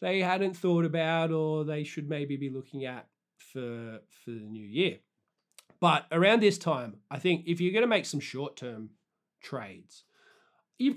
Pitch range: 140-170 Hz